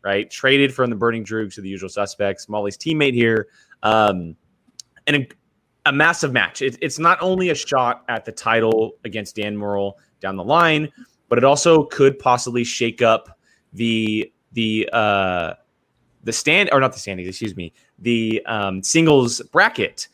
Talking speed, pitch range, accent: 165 wpm, 110-140 Hz, American